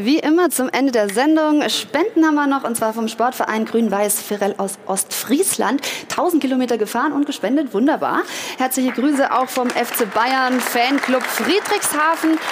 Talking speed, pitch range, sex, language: 145 wpm, 225-295 Hz, female, German